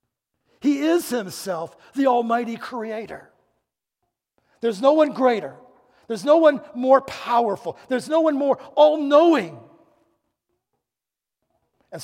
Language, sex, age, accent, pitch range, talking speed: English, male, 60-79, American, 175-250 Hz, 105 wpm